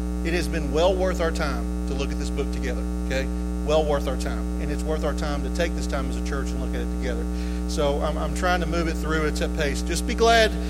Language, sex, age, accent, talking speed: English, male, 40-59, American, 275 wpm